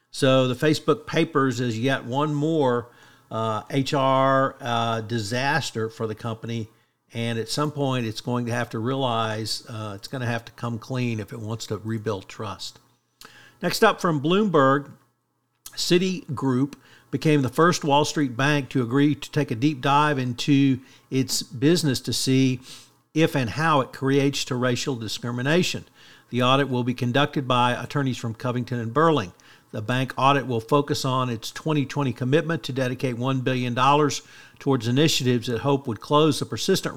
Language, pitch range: English, 120-145 Hz